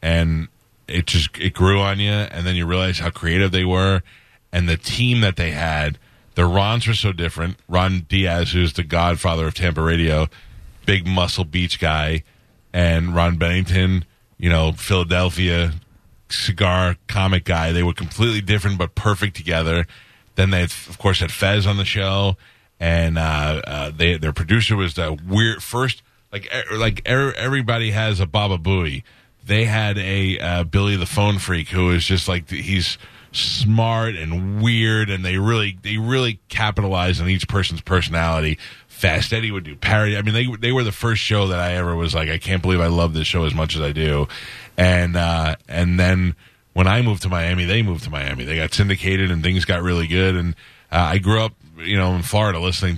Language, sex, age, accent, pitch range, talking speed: English, male, 30-49, American, 85-105 Hz, 195 wpm